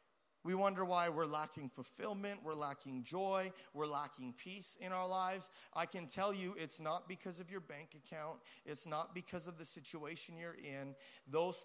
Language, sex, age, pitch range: English, male, 30-49, 170-200 Hz